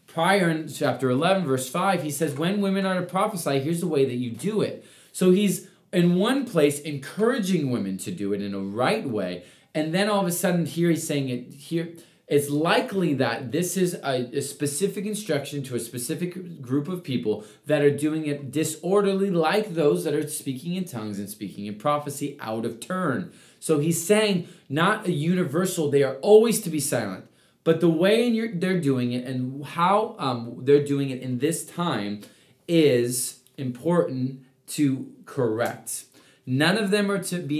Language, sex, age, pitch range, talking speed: English, male, 30-49, 130-175 Hz, 190 wpm